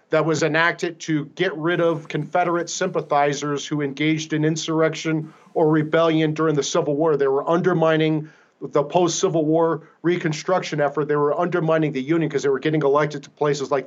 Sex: male